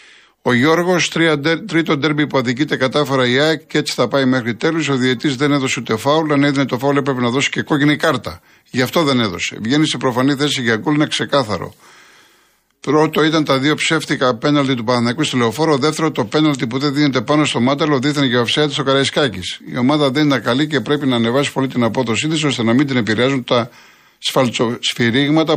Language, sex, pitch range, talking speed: Greek, male, 125-150 Hz, 205 wpm